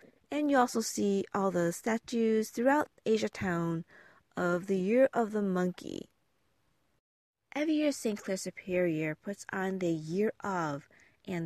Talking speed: 140 wpm